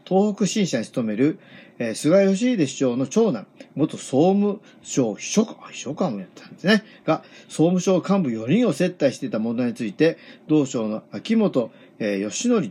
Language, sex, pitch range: Japanese, male, 155-210 Hz